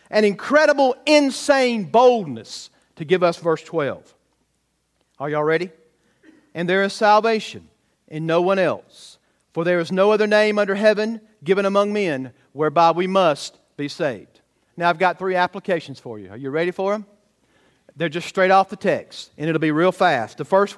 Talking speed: 175 wpm